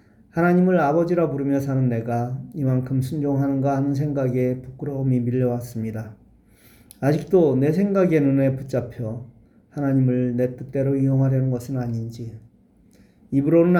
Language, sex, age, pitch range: Korean, male, 40-59, 125-160 Hz